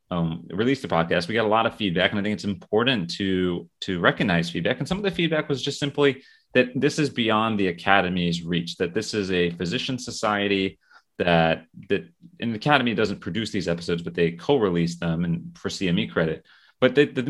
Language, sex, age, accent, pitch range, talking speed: English, male, 30-49, American, 85-125 Hz, 205 wpm